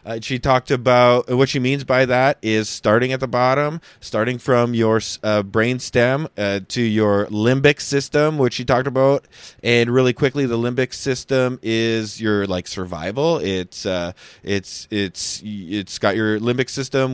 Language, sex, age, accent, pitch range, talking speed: English, male, 20-39, American, 105-130 Hz, 165 wpm